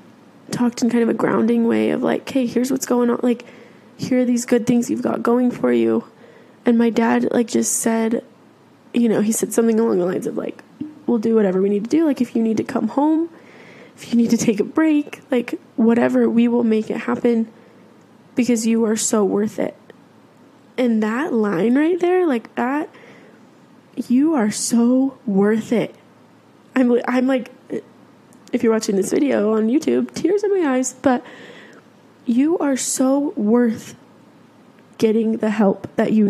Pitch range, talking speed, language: 220-250 Hz, 185 wpm, English